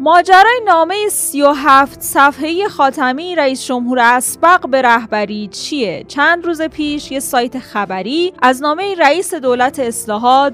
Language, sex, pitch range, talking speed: Persian, female, 215-295 Hz, 135 wpm